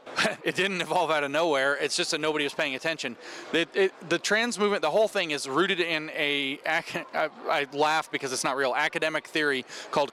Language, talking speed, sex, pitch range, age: English, 200 wpm, male, 145-175 Hz, 30-49